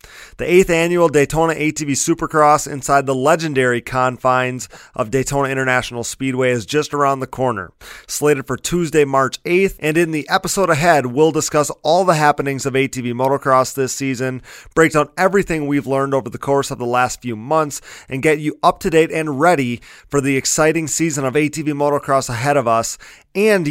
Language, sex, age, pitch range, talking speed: English, male, 30-49, 130-160 Hz, 180 wpm